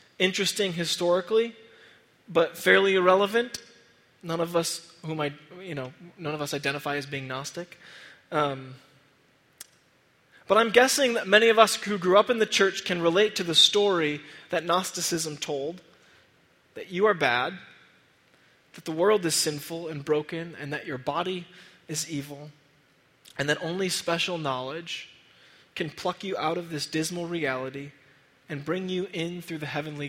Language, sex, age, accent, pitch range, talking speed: English, male, 20-39, American, 145-185 Hz, 155 wpm